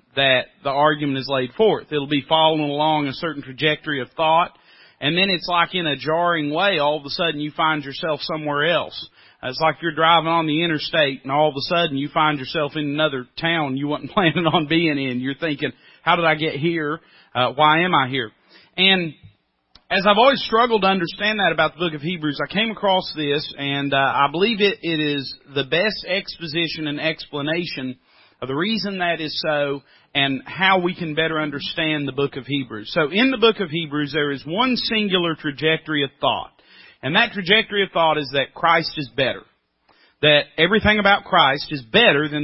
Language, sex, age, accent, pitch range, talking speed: English, male, 40-59, American, 145-185 Hz, 200 wpm